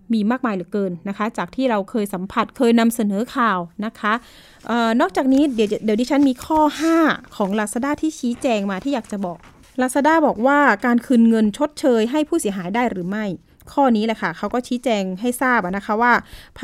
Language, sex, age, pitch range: Thai, female, 20-39, 210-270 Hz